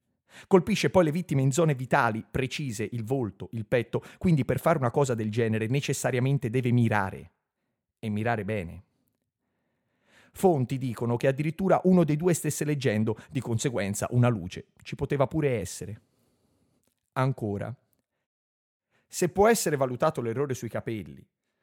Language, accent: Italian, native